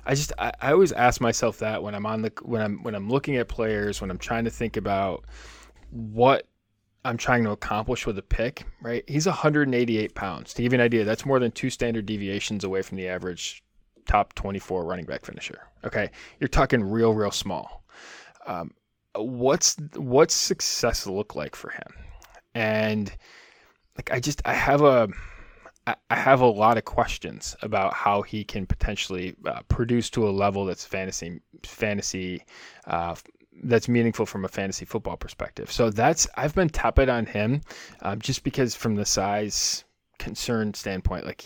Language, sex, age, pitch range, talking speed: English, male, 20-39, 100-120 Hz, 180 wpm